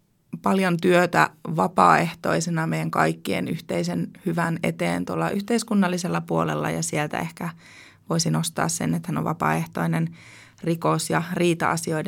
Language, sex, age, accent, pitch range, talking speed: Finnish, female, 20-39, native, 115-190 Hz, 120 wpm